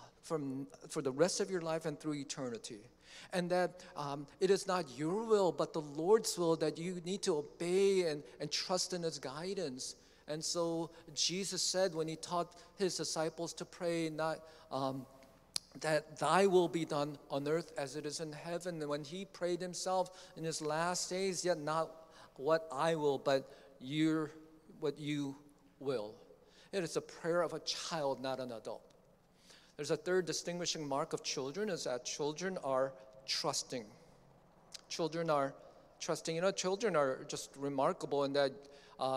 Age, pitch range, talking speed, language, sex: 50-69, 150-185 Hz, 170 wpm, English, male